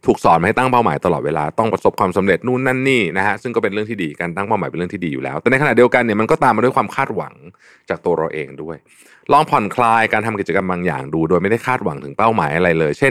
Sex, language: male, Thai